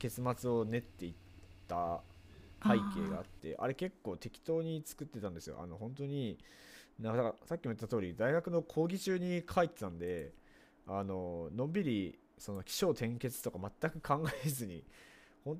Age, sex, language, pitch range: 20-39, male, Japanese, 100-160 Hz